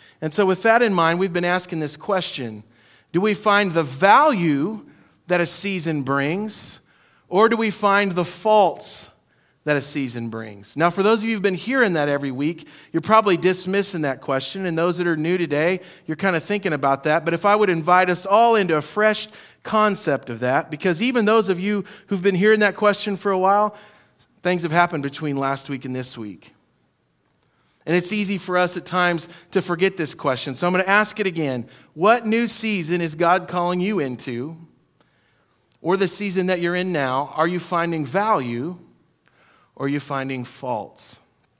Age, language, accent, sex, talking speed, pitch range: 40-59, English, American, male, 195 wpm, 145-195 Hz